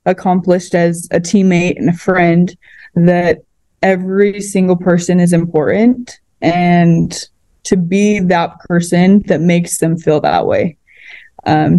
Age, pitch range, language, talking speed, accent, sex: 20-39, 170-190 Hz, English, 125 wpm, American, female